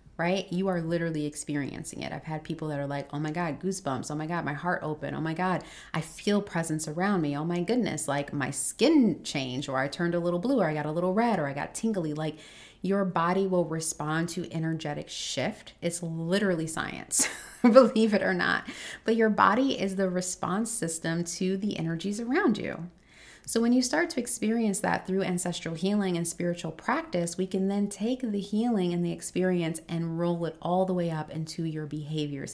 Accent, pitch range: American, 155-190 Hz